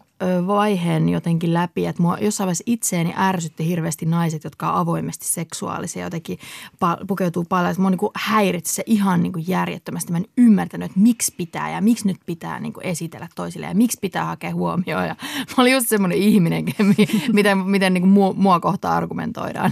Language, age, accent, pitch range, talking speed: Finnish, 30-49, native, 165-210 Hz, 175 wpm